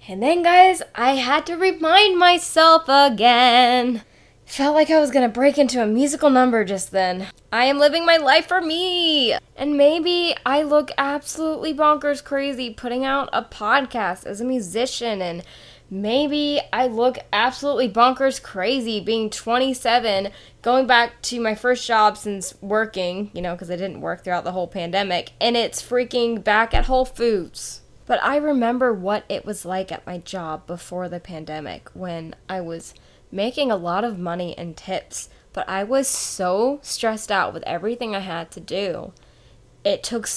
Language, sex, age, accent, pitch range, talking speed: English, female, 10-29, American, 195-275 Hz, 170 wpm